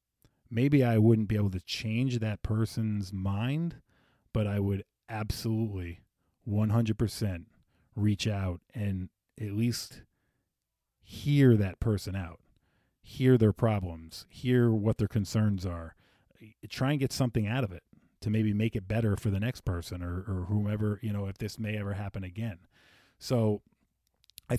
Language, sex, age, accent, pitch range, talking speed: English, male, 30-49, American, 100-120 Hz, 150 wpm